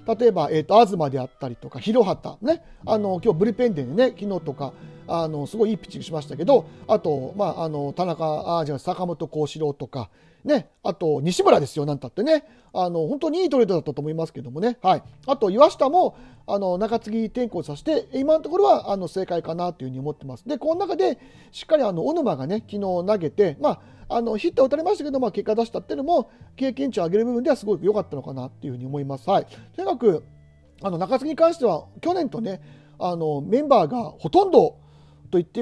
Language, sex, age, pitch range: Japanese, male, 40-59, 160-265 Hz